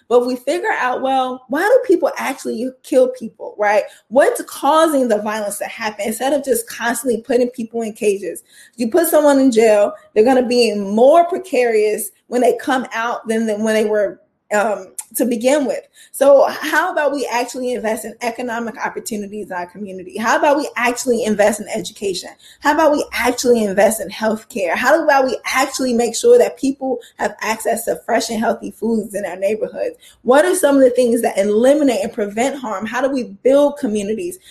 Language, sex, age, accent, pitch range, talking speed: English, female, 20-39, American, 220-280 Hz, 190 wpm